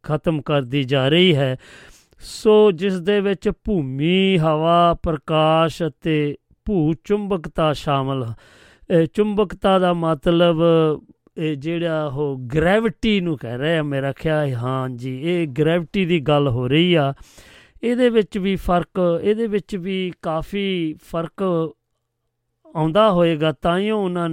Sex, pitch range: male, 145-180 Hz